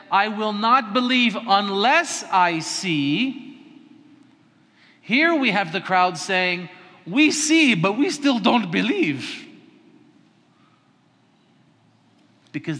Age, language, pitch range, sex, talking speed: 50-69, English, 165-235 Hz, male, 100 wpm